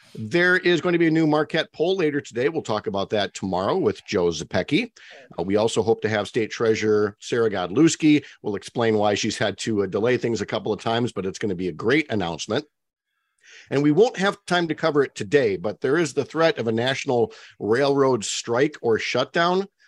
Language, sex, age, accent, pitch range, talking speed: English, male, 50-69, American, 110-160 Hz, 215 wpm